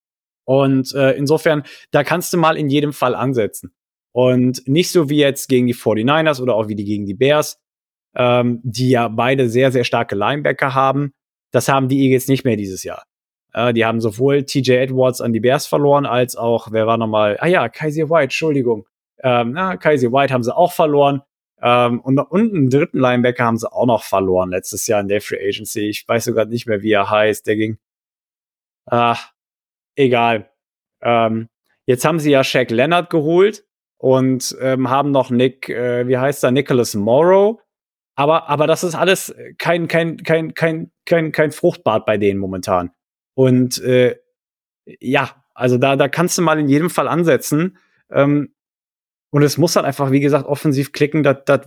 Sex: male